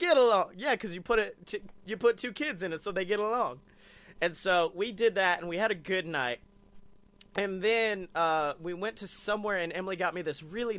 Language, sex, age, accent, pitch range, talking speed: English, male, 30-49, American, 165-210 Hz, 230 wpm